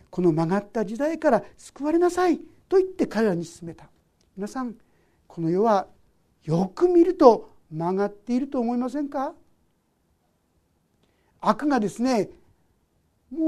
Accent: native